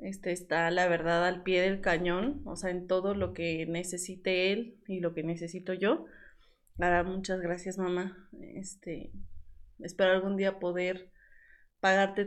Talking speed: 150 wpm